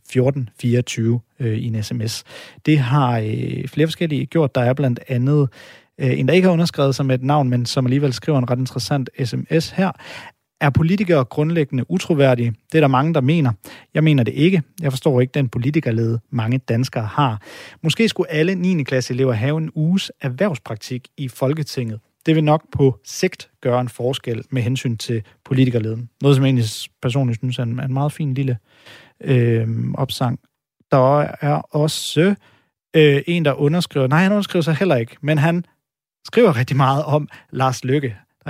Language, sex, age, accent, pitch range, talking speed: Danish, male, 40-59, native, 125-150 Hz, 180 wpm